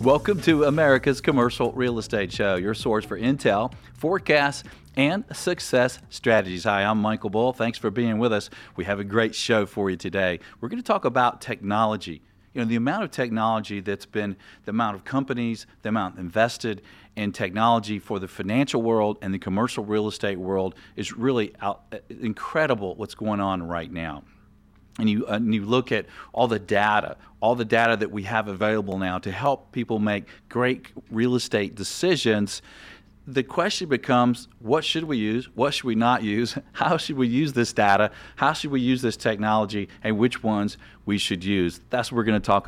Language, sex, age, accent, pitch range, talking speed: English, male, 40-59, American, 105-125 Hz, 190 wpm